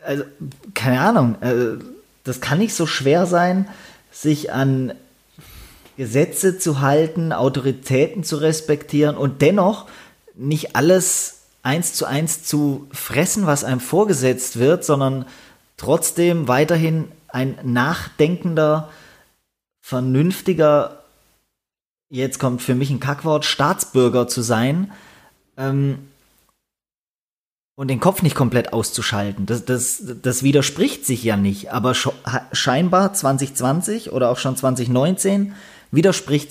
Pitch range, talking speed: 125-155 Hz, 110 wpm